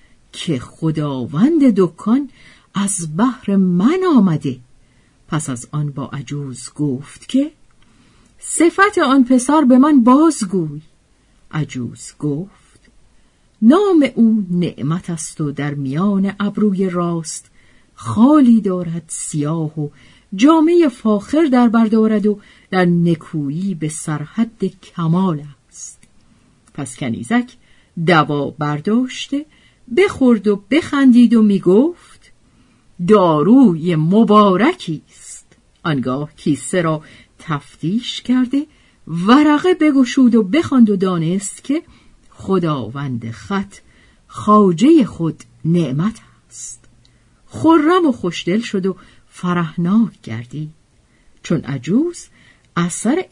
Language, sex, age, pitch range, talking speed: Persian, female, 50-69, 150-245 Hz, 95 wpm